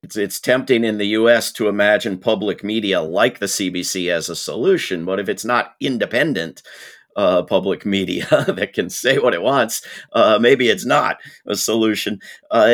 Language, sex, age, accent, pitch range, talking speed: English, male, 50-69, American, 105-125 Hz, 175 wpm